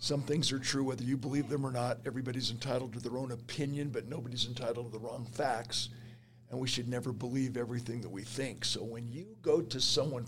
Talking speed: 220 wpm